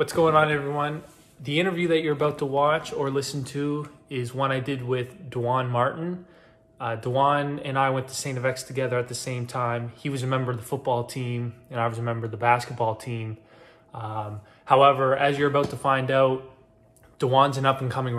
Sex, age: male, 20-39